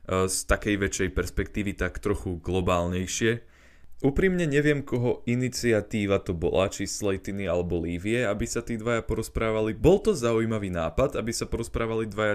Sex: male